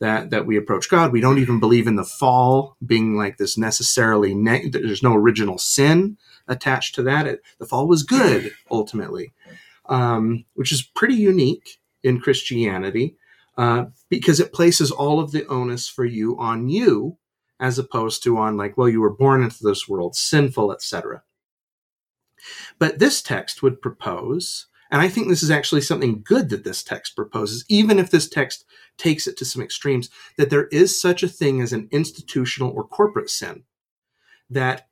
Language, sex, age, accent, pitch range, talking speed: English, male, 30-49, American, 115-150 Hz, 175 wpm